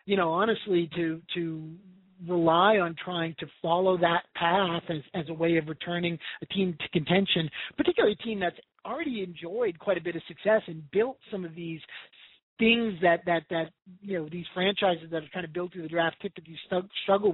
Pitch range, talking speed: 165-195 Hz, 200 wpm